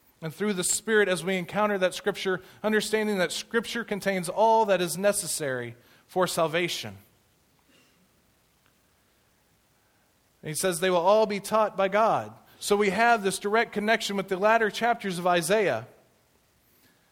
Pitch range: 140-185 Hz